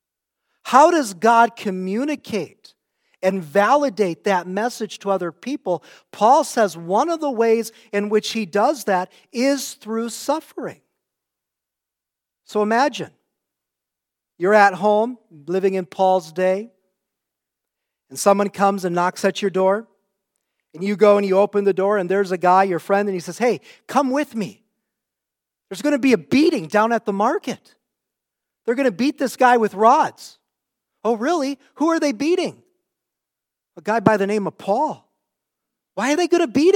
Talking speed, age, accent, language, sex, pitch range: 165 wpm, 40-59, American, English, male, 200-275 Hz